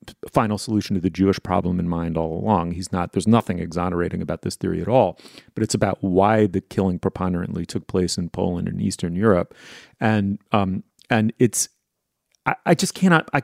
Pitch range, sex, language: 95-125 Hz, male, English